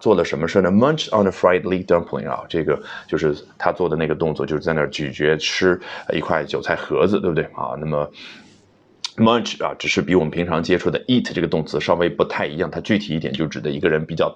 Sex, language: male, Chinese